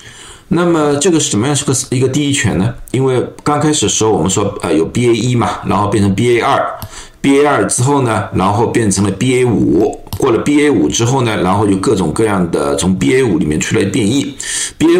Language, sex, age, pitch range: Chinese, male, 50-69, 100-145 Hz